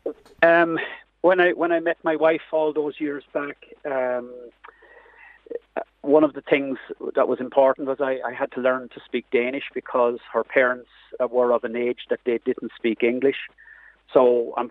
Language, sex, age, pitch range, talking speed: English, male, 40-59, 110-140 Hz, 175 wpm